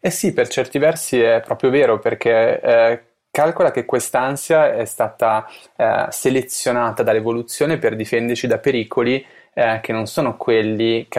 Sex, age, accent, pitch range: male, 20-39, native, 110-120 Hz